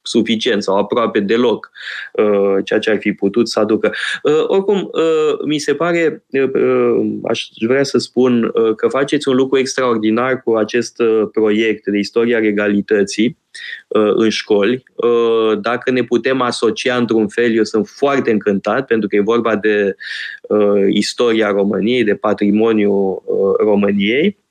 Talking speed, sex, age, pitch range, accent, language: 150 wpm, male, 20-39, 110-145 Hz, native, Romanian